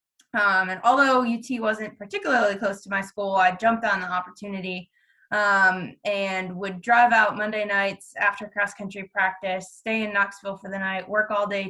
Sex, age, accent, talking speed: female, 20-39, American, 180 wpm